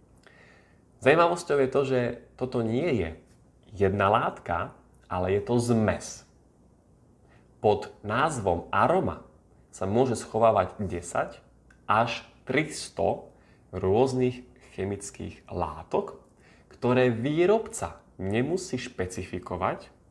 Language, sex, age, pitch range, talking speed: Slovak, male, 30-49, 90-125 Hz, 85 wpm